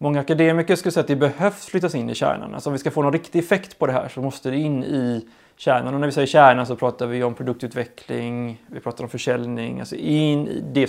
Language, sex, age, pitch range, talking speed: English, male, 20-39, 125-155 Hz, 250 wpm